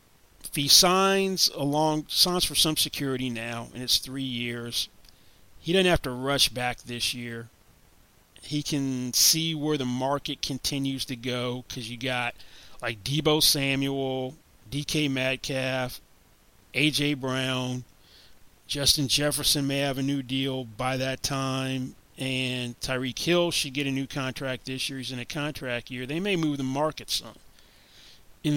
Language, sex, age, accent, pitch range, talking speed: English, male, 30-49, American, 125-150 Hz, 150 wpm